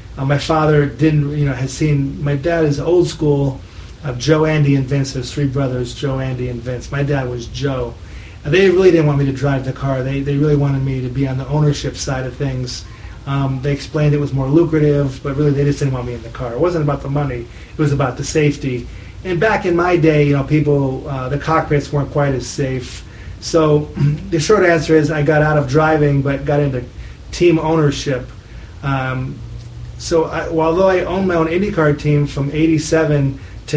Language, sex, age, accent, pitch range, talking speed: English, male, 30-49, American, 135-155 Hz, 215 wpm